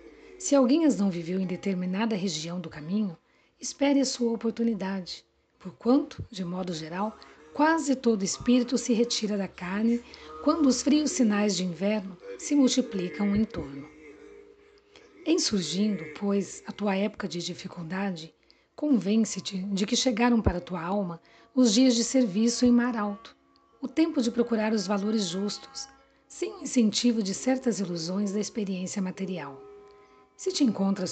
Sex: female